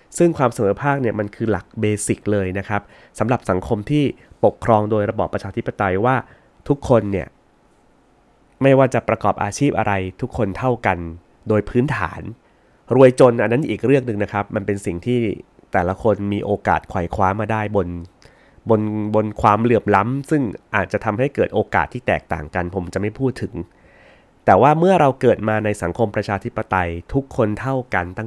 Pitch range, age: 100-135 Hz, 20-39